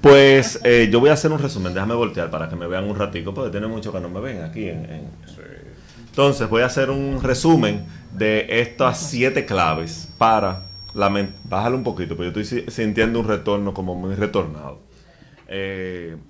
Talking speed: 195 wpm